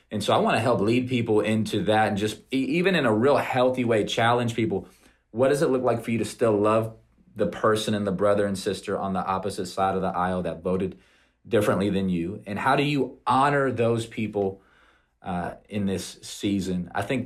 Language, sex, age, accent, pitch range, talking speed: English, male, 30-49, American, 100-120 Hz, 215 wpm